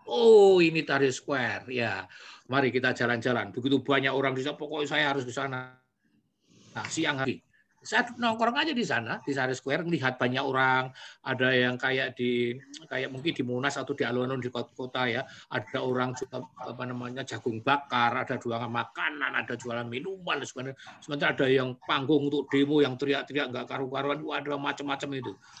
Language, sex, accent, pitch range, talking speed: Indonesian, male, native, 125-165 Hz, 175 wpm